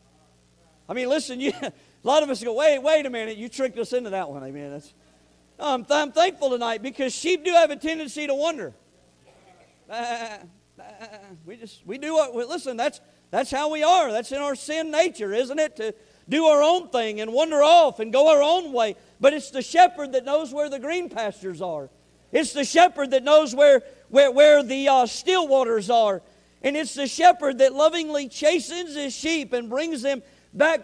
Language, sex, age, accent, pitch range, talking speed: English, male, 50-69, American, 210-290 Hz, 205 wpm